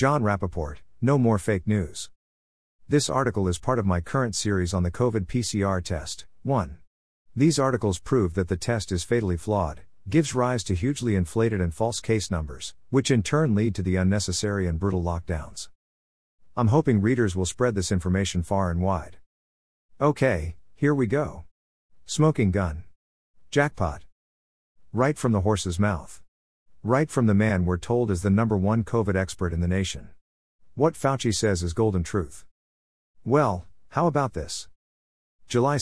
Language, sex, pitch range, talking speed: English, male, 85-120 Hz, 160 wpm